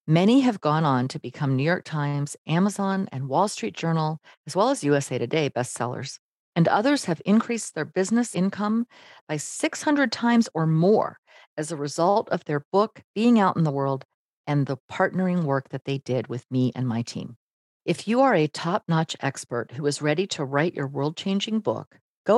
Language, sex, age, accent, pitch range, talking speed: English, female, 40-59, American, 135-200 Hz, 190 wpm